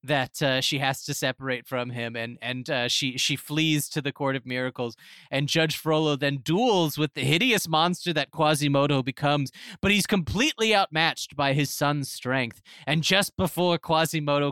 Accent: American